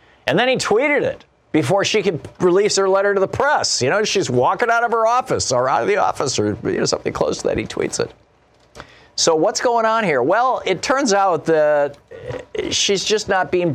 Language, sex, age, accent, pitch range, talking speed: English, male, 50-69, American, 110-150 Hz, 225 wpm